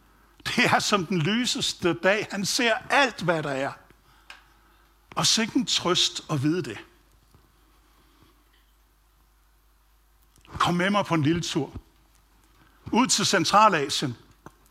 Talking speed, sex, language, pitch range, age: 120 wpm, male, Danish, 150-190 Hz, 60-79